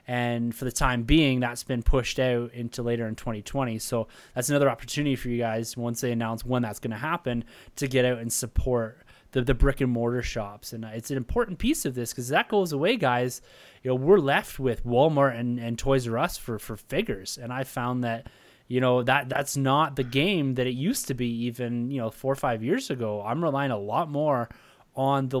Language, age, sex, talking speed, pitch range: English, 20-39, male, 225 wpm, 115-140 Hz